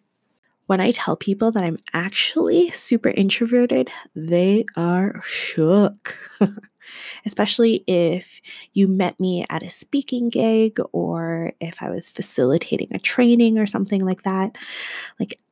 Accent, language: American, English